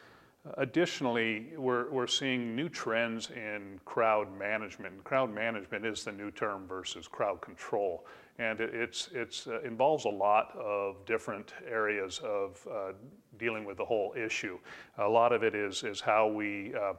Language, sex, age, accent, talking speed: English, male, 40-59, American, 165 wpm